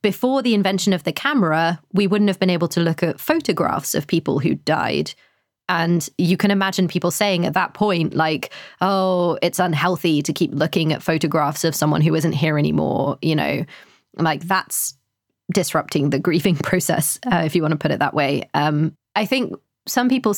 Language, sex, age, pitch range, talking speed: English, female, 20-39, 155-185 Hz, 190 wpm